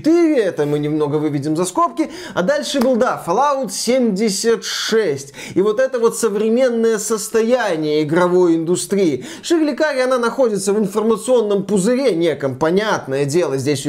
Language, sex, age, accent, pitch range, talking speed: Russian, male, 20-39, native, 165-235 Hz, 140 wpm